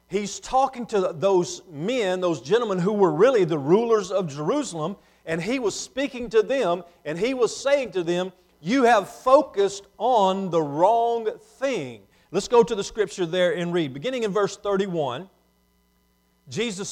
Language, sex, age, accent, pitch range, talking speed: English, male, 40-59, American, 155-215 Hz, 165 wpm